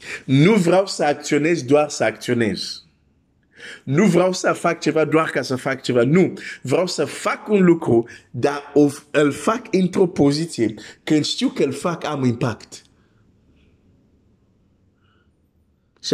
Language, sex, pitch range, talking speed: Romanian, male, 110-145 Hz, 135 wpm